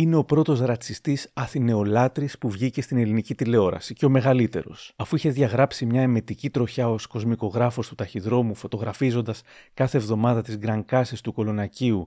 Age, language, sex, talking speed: 30-49, Greek, male, 150 wpm